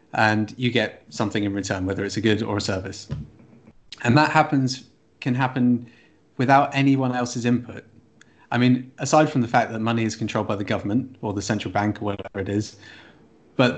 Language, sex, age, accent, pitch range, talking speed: English, male, 30-49, British, 105-130 Hz, 190 wpm